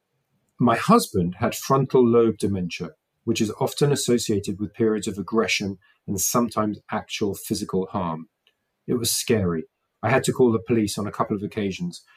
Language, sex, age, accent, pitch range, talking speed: English, male, 40-59, British, 100-120 Hz, 165 wpm